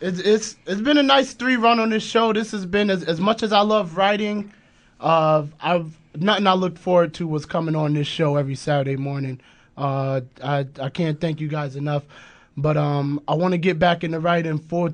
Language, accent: English, American